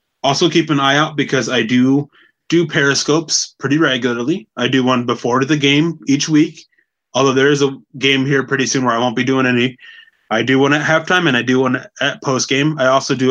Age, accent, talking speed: 20-39, American, 220 wpm